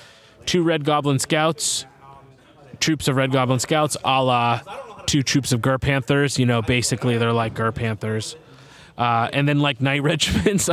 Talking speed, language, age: 160 wpm, English, 20-39